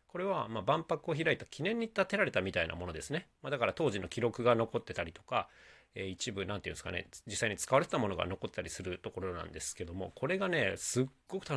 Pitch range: 95-150 Hz